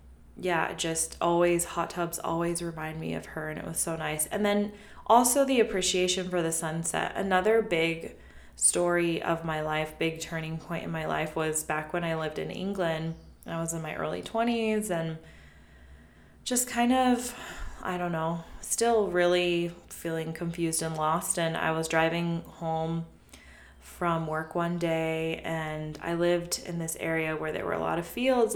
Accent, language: American, English